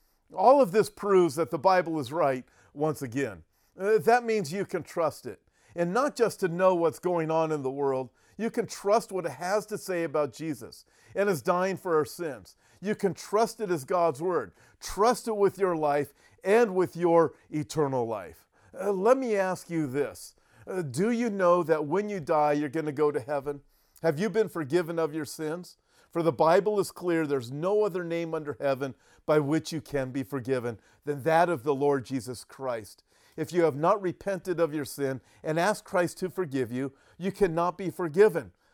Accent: American